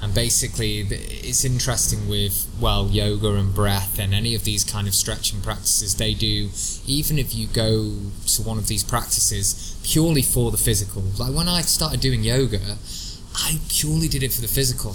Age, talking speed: 20-39, 180 wpm